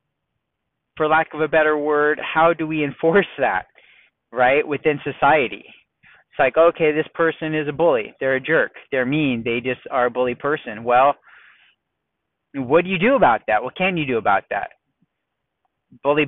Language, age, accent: English, 30-49, American